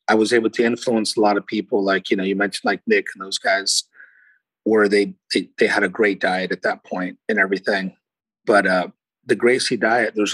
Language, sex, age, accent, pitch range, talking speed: English, male, 40-59, American, 110-150 Hz, 220 wpm